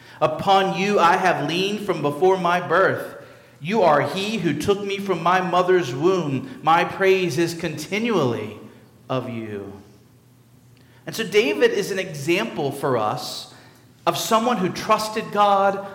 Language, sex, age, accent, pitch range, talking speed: English, male, 40-59, American, 125-185 Hz, 145 wpm